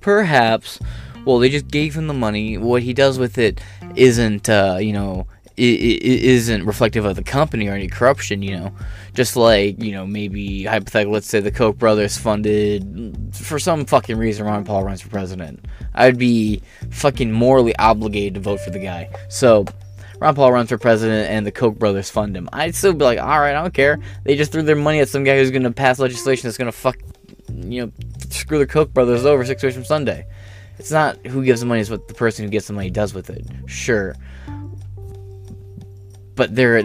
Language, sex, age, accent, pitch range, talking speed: English, male, 20-39, American, 100-135 Hz, 200 wpm